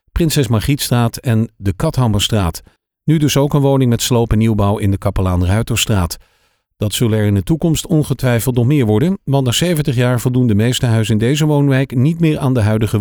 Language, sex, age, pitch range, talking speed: Dutch, male, 50-69, 105-145 Hz, 205 wpm